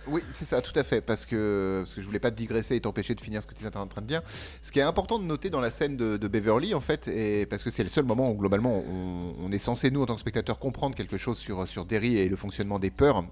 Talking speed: 320 wpm